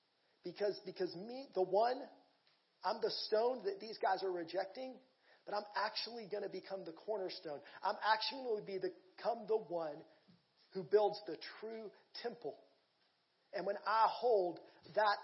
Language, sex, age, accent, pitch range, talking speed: English, male, 40-59, American, 170-220 Hz, 150 wpm